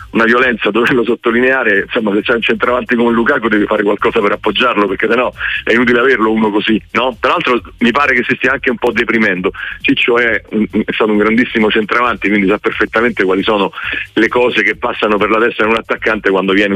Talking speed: 215 wpm